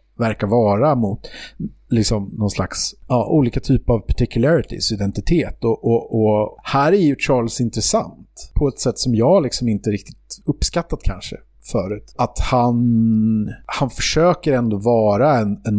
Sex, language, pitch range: male, English, 105-135 Hz